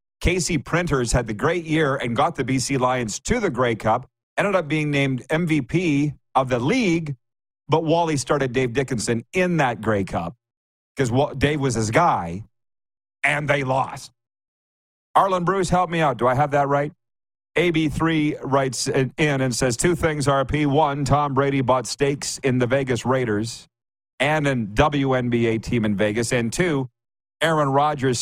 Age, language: 40-59, English